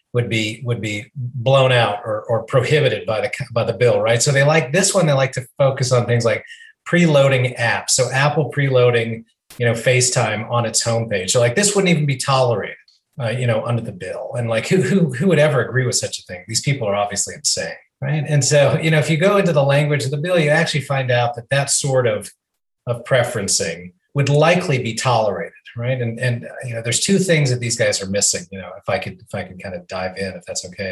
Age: 30-49